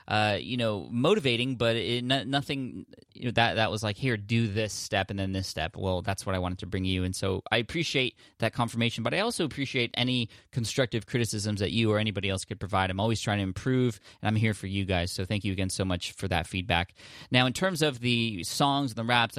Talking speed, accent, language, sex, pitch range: 245 wpm, American, English, male, 100-120 Hz